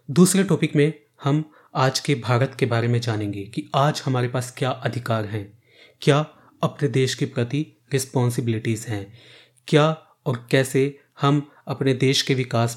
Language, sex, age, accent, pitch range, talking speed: Hindi, male, 30-49, native, 120-145 Hz, 155 wpm